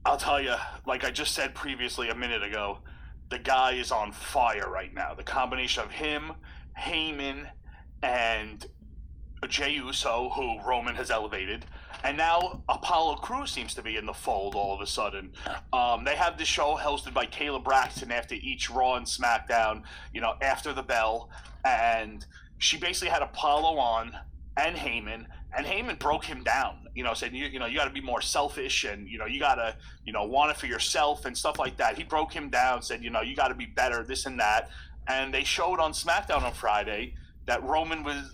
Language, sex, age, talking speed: English, male, 30-49, 200 wpm